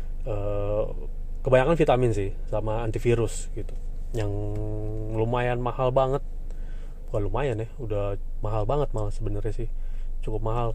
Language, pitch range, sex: Indonesian, 105-120 Hz, male